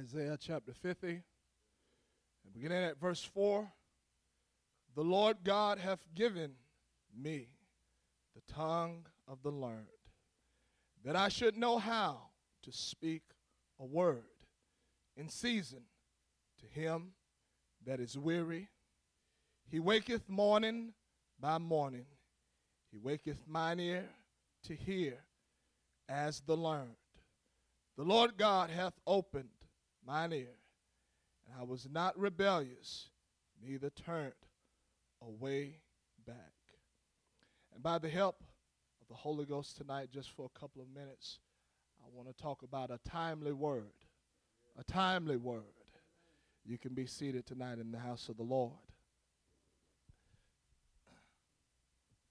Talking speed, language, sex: 115 wpm, English, male